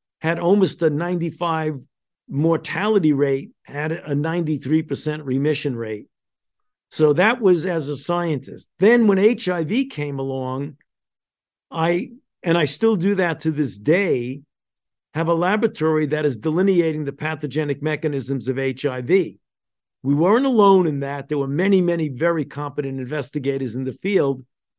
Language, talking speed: English, 140 wpm